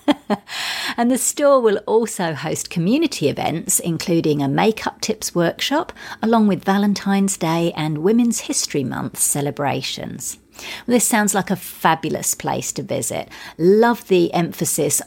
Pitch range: 150-215 Hz